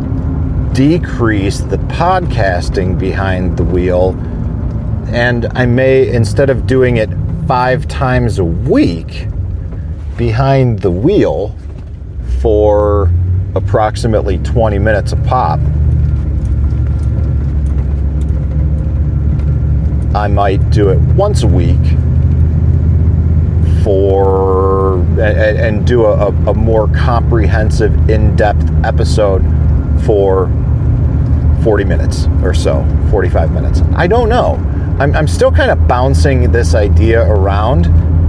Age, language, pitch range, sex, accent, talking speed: 40-59, English, 80-95 Hz, male, American, 100 wpm